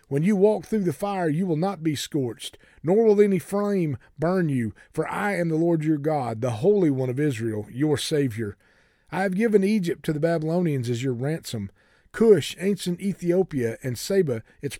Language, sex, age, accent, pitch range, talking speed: English, male, 40-59, American, 135-190 Hz, 190 wpm